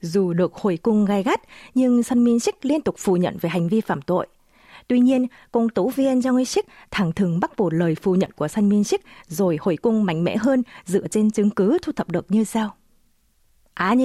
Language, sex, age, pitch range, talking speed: Vietnamese, female, 30-49, 180-255 Hz, 220 wpm